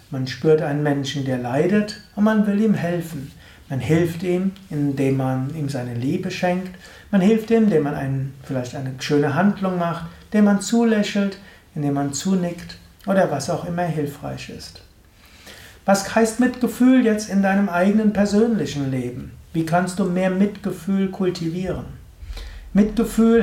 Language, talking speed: German, 150 wpm